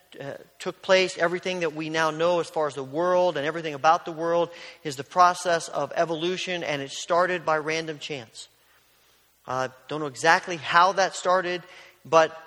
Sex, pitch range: male, 145-170 Hz